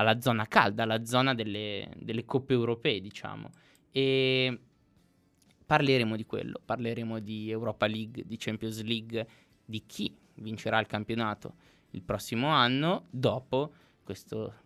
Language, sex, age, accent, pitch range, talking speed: Italian, male, 20-39, native, 110-150 Hz, 125 wpm